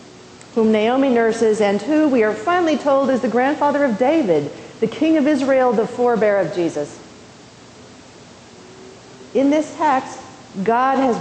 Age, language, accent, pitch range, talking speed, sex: 40-59, English, American, 195-270 Hz, 145 wpm, female